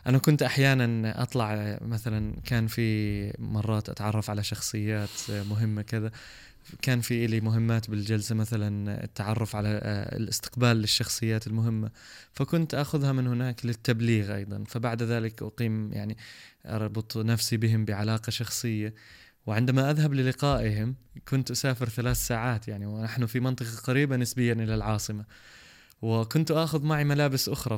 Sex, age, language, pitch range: male, 20-39, Arabic, 110-135 Hz